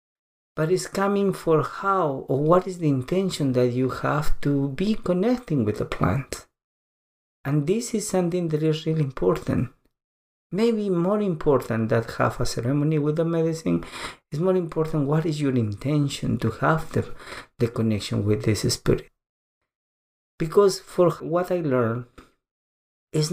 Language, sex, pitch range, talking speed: English, male, 115-160 Hz, 150 wpm